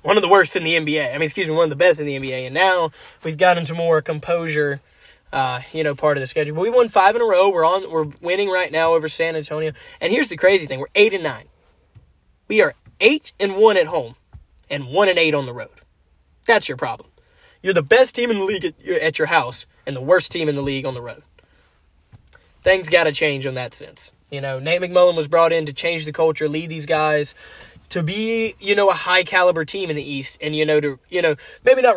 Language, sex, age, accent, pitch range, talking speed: English, male, 10-29, American, 145-185 Hz, 250 wpm